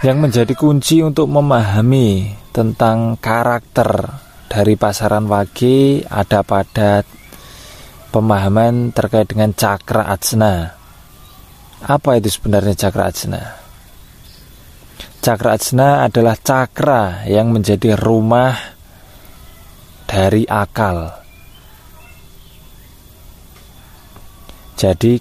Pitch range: 95-120 Hz